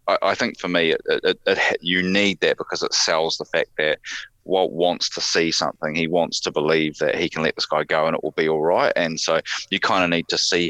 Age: 20-39